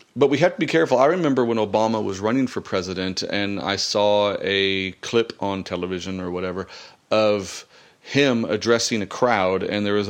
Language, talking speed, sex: English, 185 wpm, male